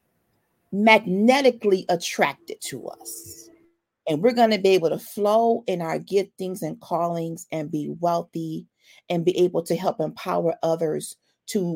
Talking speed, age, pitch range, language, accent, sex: 150 wpm, 40-59, 170-220 Hz, English, American, female